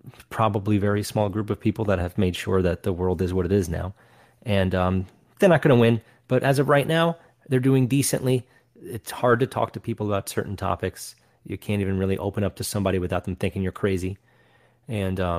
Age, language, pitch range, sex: 30-49, English, 100-120 Hz, male